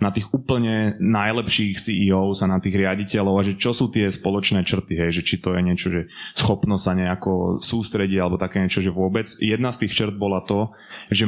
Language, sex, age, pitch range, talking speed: Slovak, male, 20-39, 100-115 Hz, 200 wpm